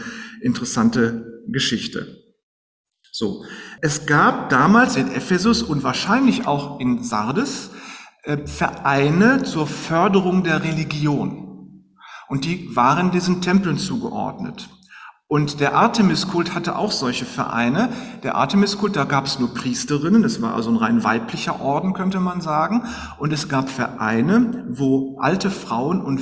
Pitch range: 135-220 Hz